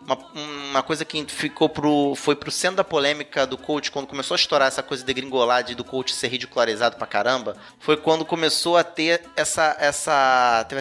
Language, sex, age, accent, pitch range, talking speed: Portuguese, male, 20-39, Brazilian, 125-160 Hz, 200 wpm